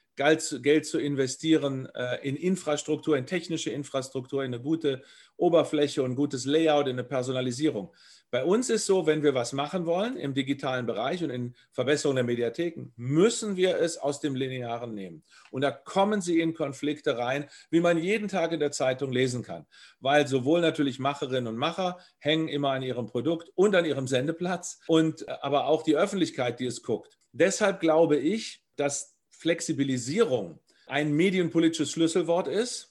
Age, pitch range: 40-59, 135-170 Hz